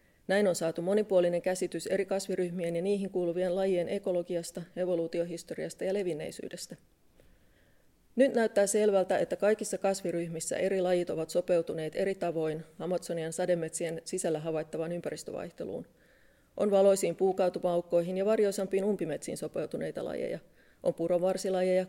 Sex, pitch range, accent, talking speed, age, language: female, 175-205 Hz, native, 115 wpm, 30-49, Finnish